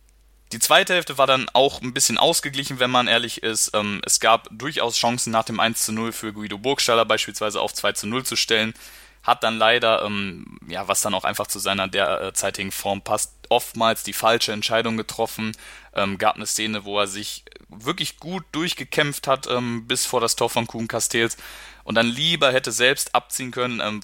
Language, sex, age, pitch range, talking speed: German, male, 20-39, 100-115 Hz, 180 wpm